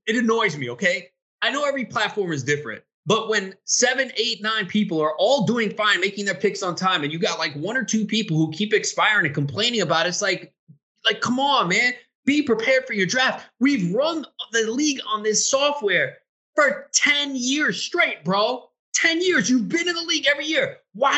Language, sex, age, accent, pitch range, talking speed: English, male, 20-39, American, 155-255 Hz, 205 wpm